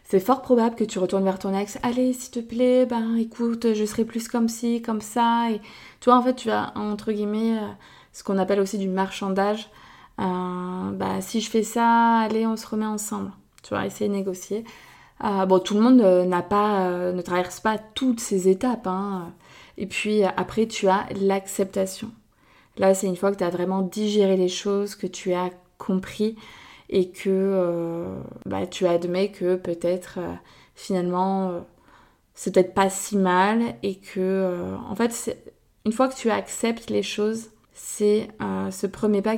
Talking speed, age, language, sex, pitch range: 190 wpm, 20-39, French, female, 190-220 Hz